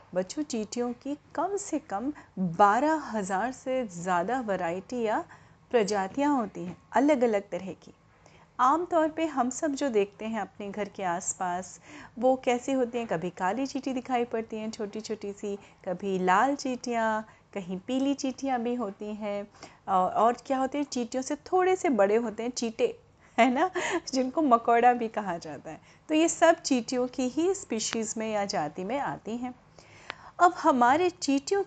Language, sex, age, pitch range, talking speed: Hindi, female, 30-49, 205-295 Hz, 165 wpm